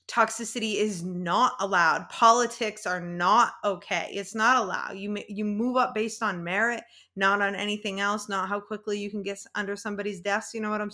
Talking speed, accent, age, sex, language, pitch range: 195 wpm, American, 20-39, female, English, 205-255 Hz